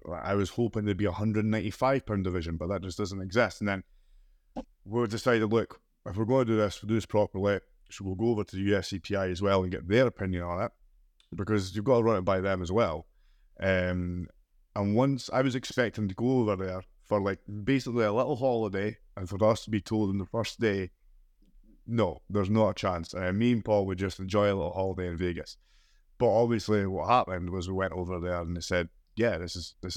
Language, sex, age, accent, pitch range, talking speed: English, male, 20-39, British, 90-110 Hz, 235 wpm